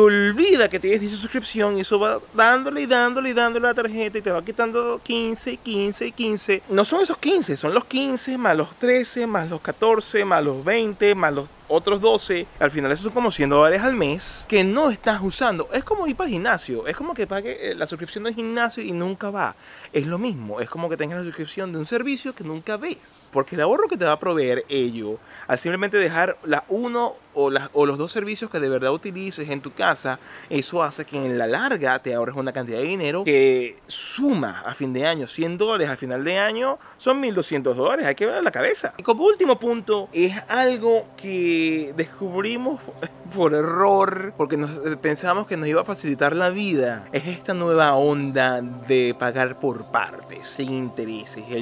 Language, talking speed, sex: Spanish, 205 wpm, male